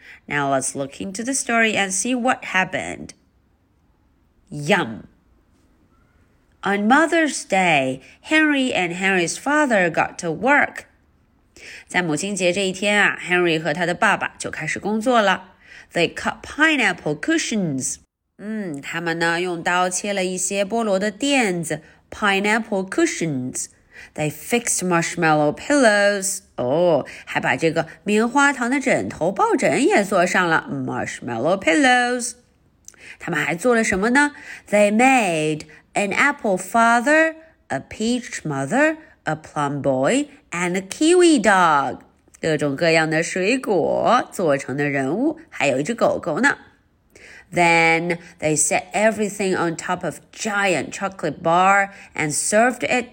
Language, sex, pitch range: Chinese, female, 160-245 Hz